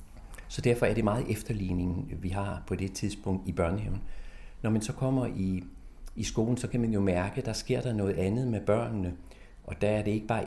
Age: 40-59